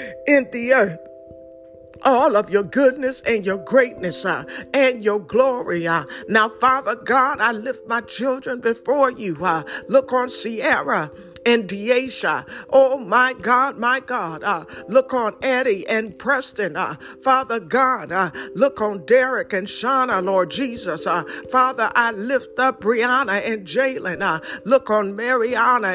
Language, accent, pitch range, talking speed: English, American, 220-265 Hz, 145 wpm